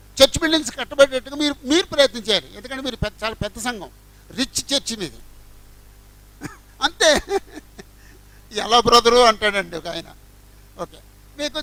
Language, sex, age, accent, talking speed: Telugu, male, 60-79, native, 115 wpm